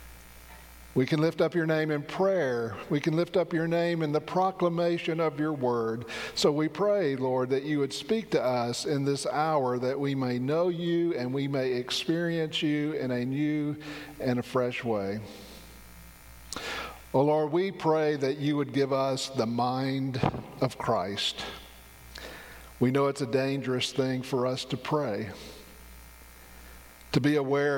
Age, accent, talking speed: 50-69, American, 165 wpm